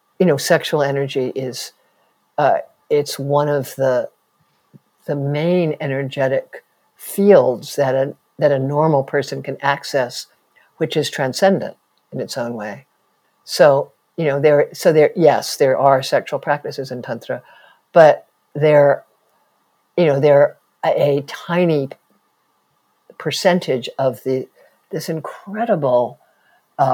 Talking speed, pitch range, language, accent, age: 115 wpm, 135-155 Hz, English, American, 60-79